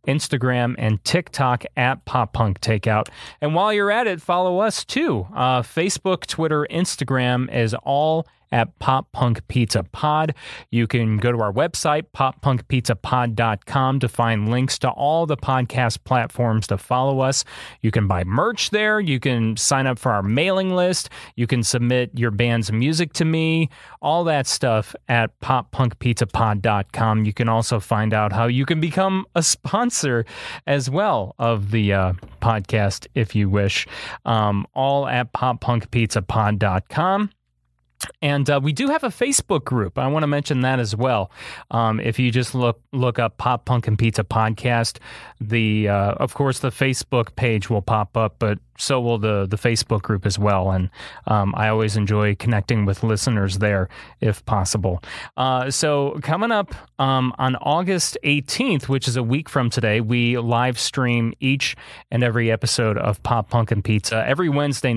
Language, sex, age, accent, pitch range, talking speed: English, male, 30-49, American, 110-135 Hz, 165 wpm